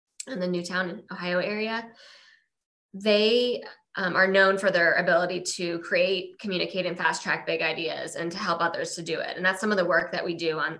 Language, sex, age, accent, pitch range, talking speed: English, female, 20-39, American, 170-210 Hz, 205 wpm